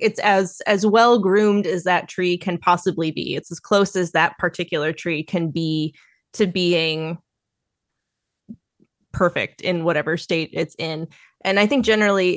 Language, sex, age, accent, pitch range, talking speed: English, female, 20-39, American, 160-185 Hz, 155 wpm